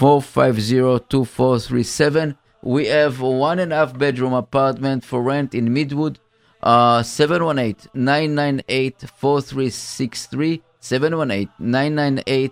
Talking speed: 70 wpm